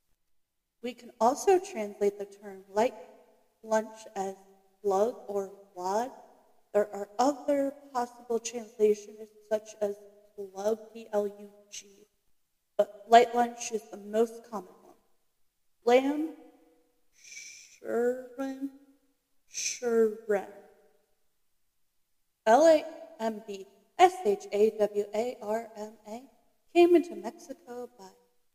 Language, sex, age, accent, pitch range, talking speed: English, female, 30-49, American, 205-245 Hz, 80 wpm